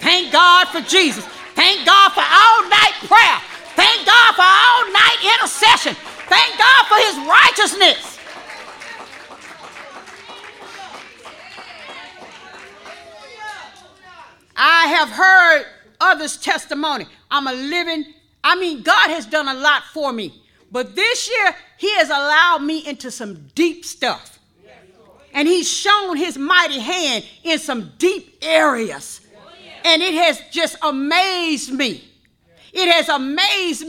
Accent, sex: American, female